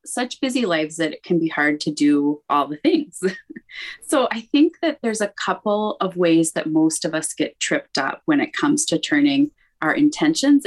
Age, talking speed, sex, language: 20-39, 200 wpm, female, English